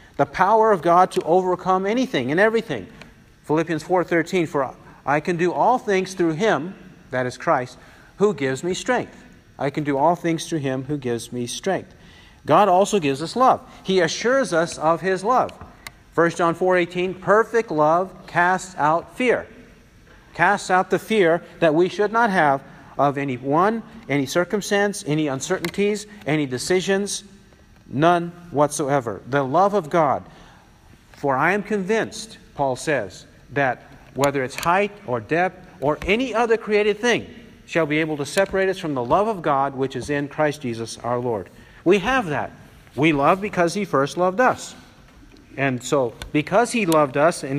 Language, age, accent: English, 50-69, American